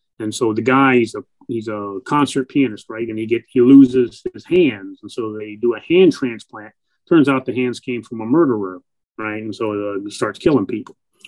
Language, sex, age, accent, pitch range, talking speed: English, male, 30-49, American, 110-140 Hz, 220 wpm